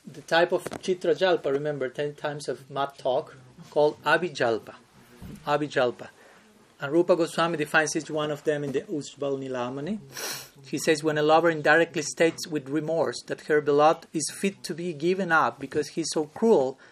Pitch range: 140-165 Hz